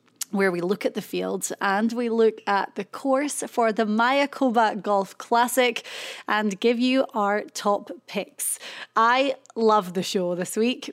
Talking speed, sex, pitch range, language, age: 160 wpm, female, 205-250 Hz, English, 30-49